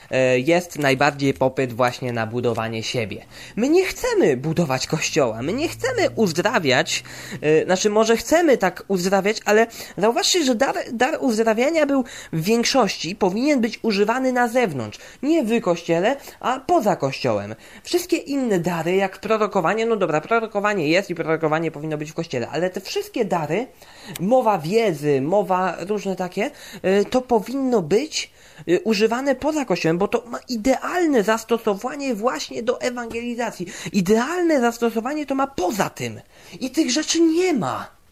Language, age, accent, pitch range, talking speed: Polish, 20-39, native, 175-275 Hz, 140 wpm